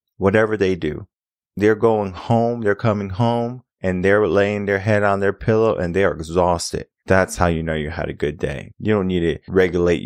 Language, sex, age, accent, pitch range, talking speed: English, male, 20-39, American, 90-110 Hz, 210 wpm